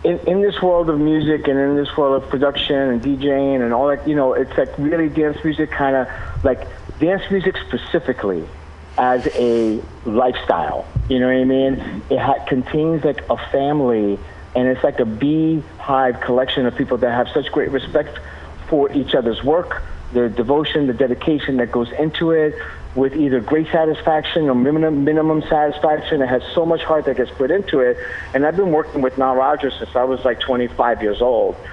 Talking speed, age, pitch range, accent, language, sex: 185 wpm, 50-69, 120-150 Hz, American, English, male